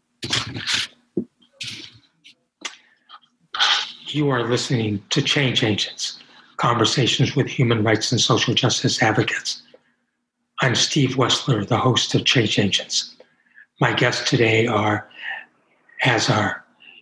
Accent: American